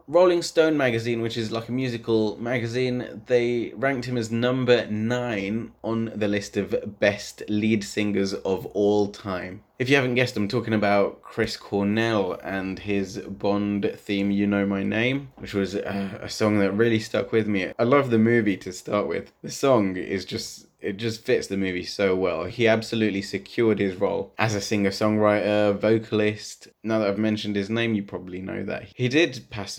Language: English